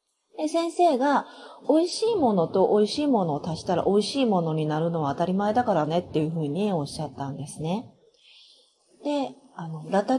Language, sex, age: Japanese, female, 40-59